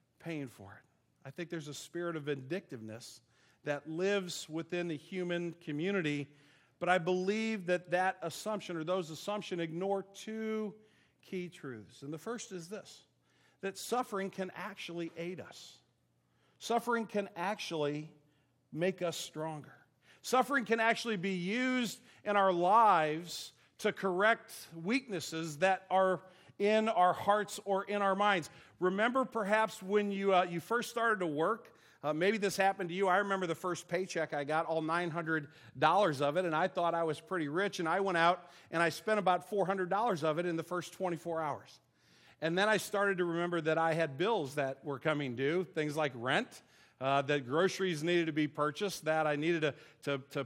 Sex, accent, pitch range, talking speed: male, American, 155-195 Hz, 175 wpm